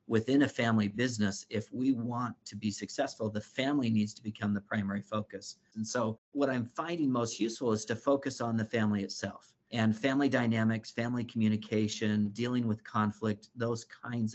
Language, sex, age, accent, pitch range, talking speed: English, male, 50-69, American, 110-130 Hz, 175 wpm